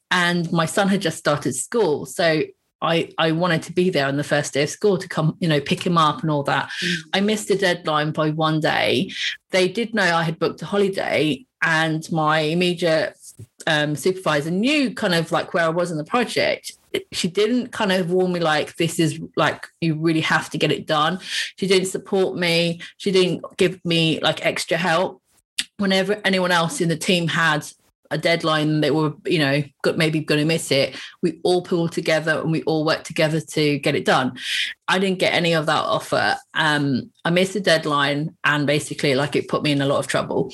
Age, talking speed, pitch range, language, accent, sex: 30-49, 210 wpm, 155-190 Hz, English, British, female